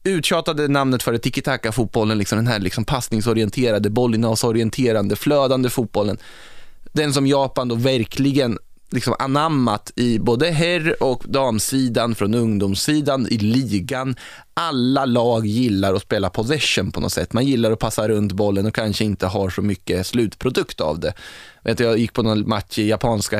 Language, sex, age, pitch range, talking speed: Swedish, male, 20-39, 110-135 Hz, 160 wpm